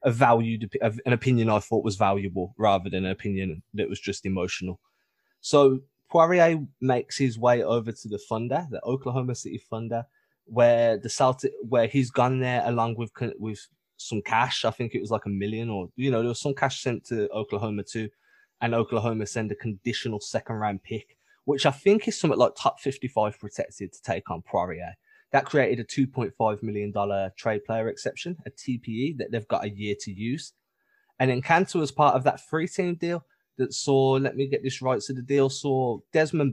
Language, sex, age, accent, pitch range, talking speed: English, male, 20-39, British, 110-135 Hz, 200 wpm